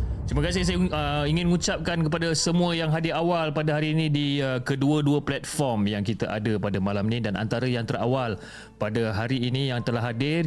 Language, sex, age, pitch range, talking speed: Malay, male, 30-49, 110-145 Hz, 195 wpm